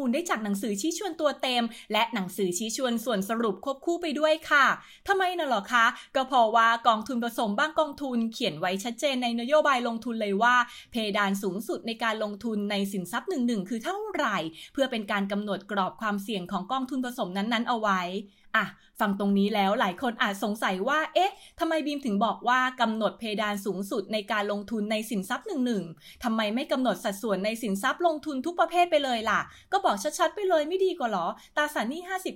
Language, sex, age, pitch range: English, female, 20-39, 210-275 Hz